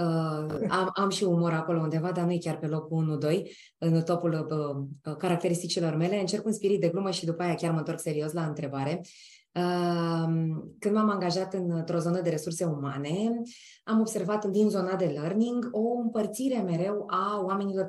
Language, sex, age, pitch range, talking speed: Romanian, female, 20-39, 165-240 Hz, 175 wpm